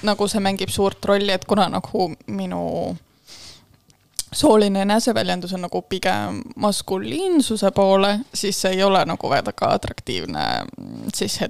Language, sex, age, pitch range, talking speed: English, female, 20-39, 155-200 Hz, 125 wpm